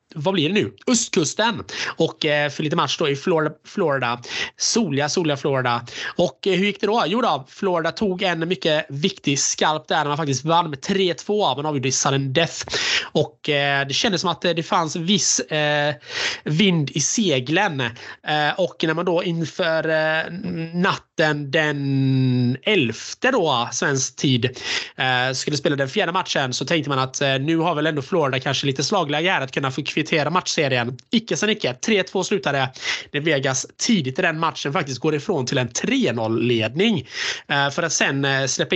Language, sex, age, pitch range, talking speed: Swedish, male, 20-39, 140-180 Hz, 175 wpm